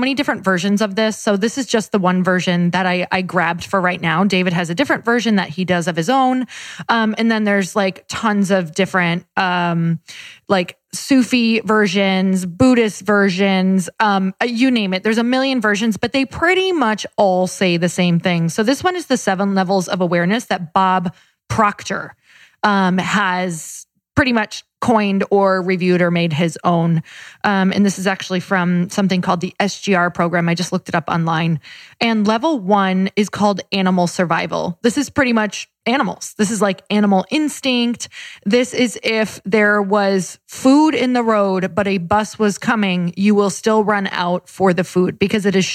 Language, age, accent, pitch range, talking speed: English, 20-39, American, 185-220 Hz, 190 wpm